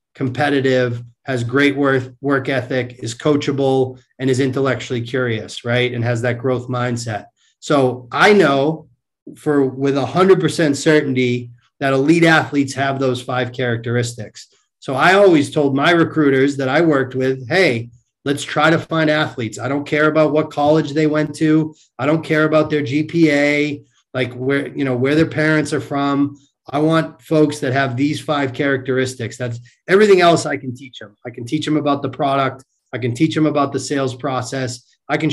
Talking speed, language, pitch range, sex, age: 175 wpm, English, 125-155 Hz, male, 30-49